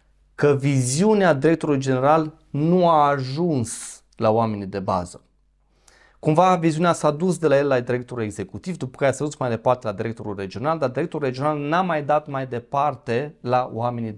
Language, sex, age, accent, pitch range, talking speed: Romanian, male, 30-49, native, 115-150 Hz, 170 wpm